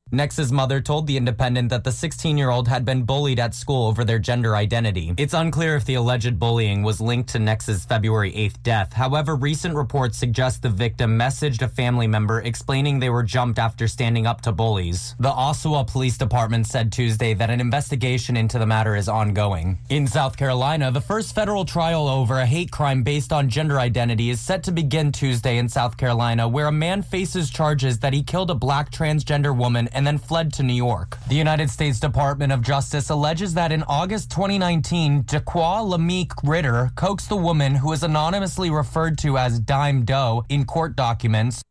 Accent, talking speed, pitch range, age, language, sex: American, 195 wpm, 120-150 Hz, 20-39, English, male